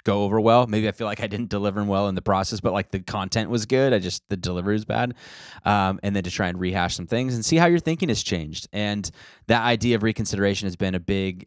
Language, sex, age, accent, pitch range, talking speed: English, male, 20-39, American, 90-110 Hz, 265 wpm